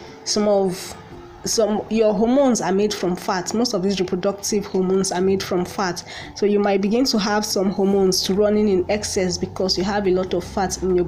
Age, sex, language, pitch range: 20-39, female, English, 185-210 Hz